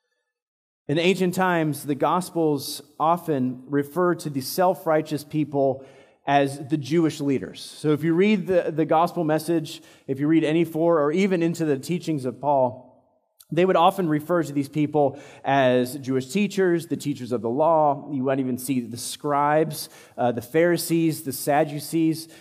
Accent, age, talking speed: American, 30-49, 165 wpm